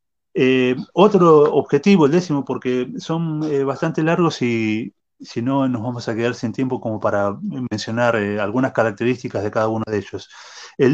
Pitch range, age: 110-140 Hz, 30-49